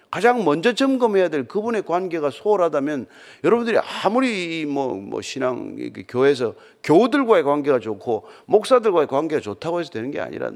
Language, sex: Korean, male